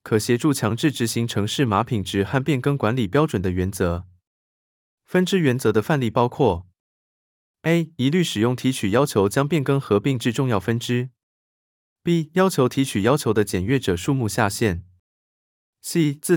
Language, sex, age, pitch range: Chinese, male, 20-39, 100-145 Hz